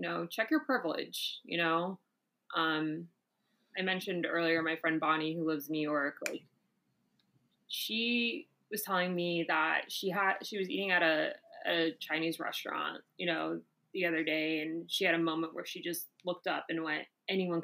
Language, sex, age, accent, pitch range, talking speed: English, female, 20-39, American, 165-195 Hz, 175 wpm